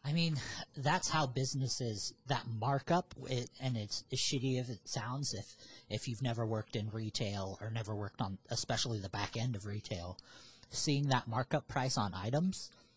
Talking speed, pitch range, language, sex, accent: 180 wpm, 110-135 Hz, English, male, American